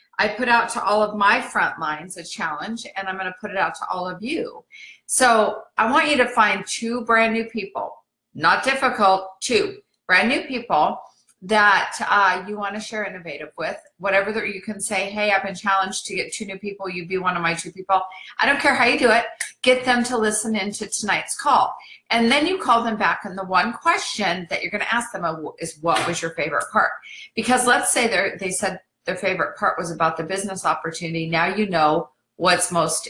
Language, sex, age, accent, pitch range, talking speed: English, female, 40-59, American, 180-235 Hz, 215 wpm